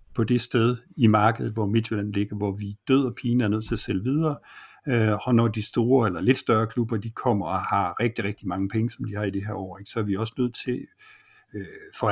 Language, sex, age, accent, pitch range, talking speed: Danish, male, 60-79, native, 105-125 Hz, 250 wpm